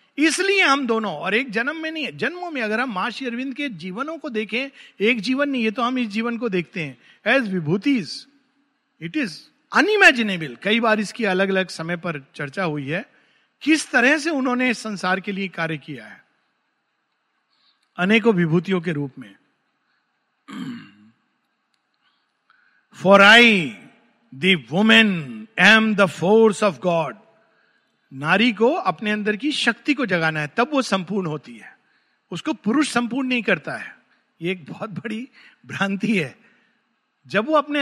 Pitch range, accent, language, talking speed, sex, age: 185-260 Hz, native, Hindi, 150 wpm, male, 50-69